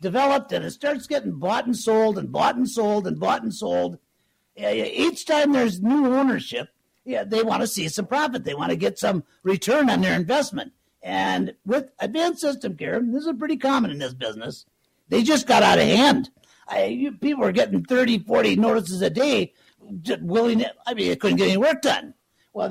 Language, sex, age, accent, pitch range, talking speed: English, male, 60-79, American, 215-275 Hz, 205 wpm